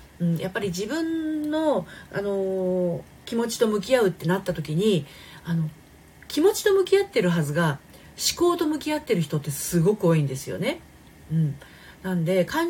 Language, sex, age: Japanese, female, 40-59